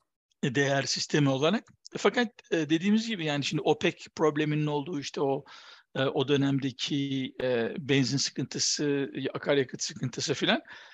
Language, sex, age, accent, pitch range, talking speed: Turkish, male, 60-79, native, 140-185 Hz, 110 wpm